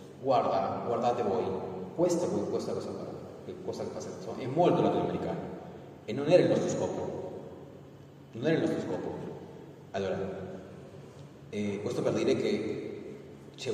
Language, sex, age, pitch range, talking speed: Italian, male, 30-49, 95-115 Hz, 125 wpm